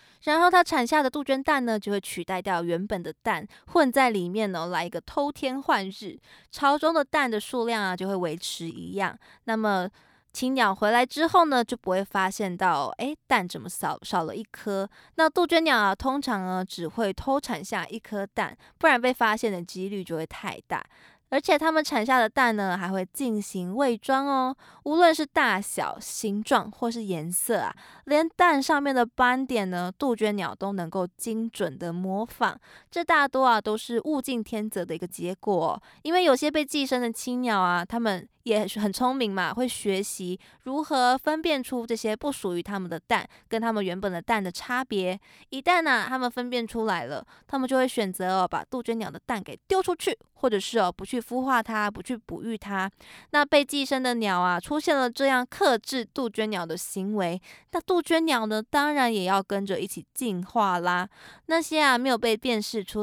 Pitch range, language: 195-270 Hz, Chinese